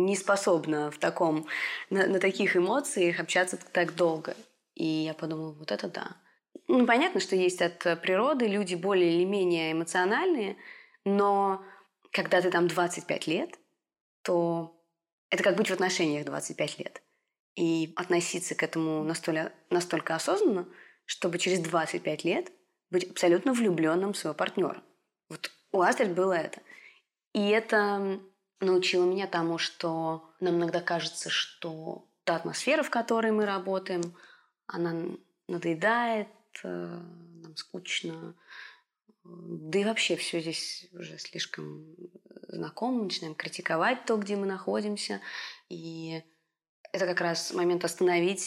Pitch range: 170-195 Hz